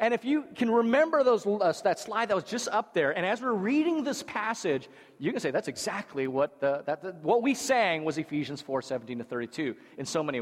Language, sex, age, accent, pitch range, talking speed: English, male, 40-59, American, 140-190 Hz, 235 wpm